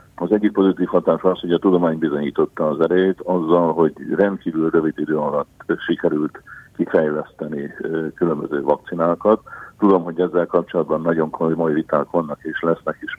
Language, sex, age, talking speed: Hungarian, male, 50-69, 145 wpm